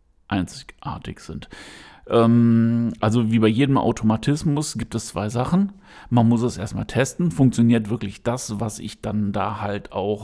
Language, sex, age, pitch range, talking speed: German, male, 50-69, 105-125 Hz, 150 wpm